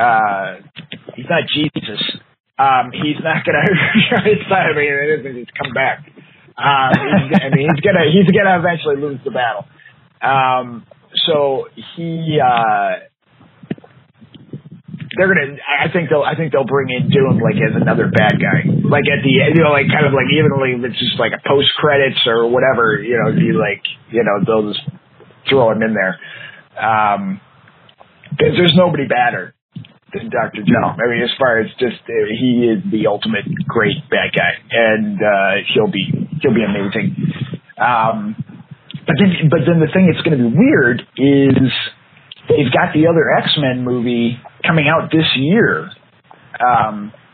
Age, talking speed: 30-49, 165 wpm